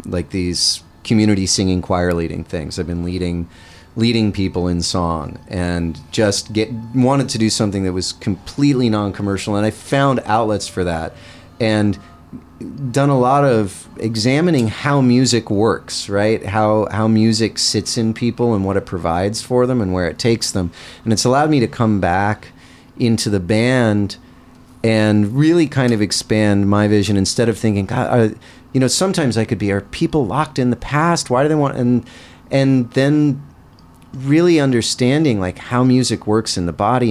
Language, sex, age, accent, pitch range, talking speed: English, male, 30-49, American, 100-130 Hz, 175 wpm